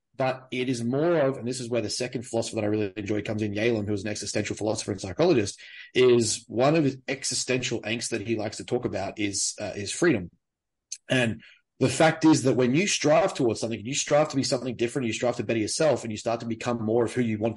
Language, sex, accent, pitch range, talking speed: English, male, Australian, 115-140 Hz, 250 wpm